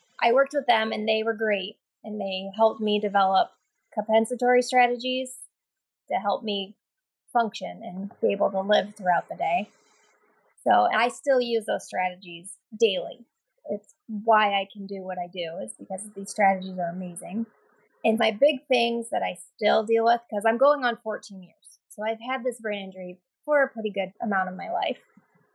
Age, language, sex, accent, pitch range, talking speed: 20-39, English, female, American, 195-235 Hz, 180 wpm